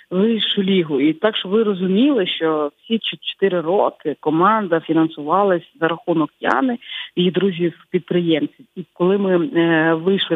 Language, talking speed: Ukrainian, 135 wpm